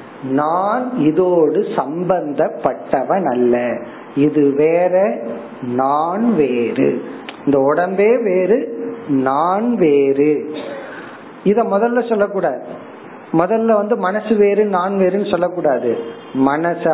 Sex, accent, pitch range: male, native, 145-205 Hz